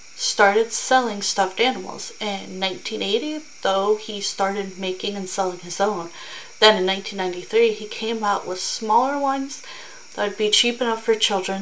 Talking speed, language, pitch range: 155 wpm, English, 195-250 Hz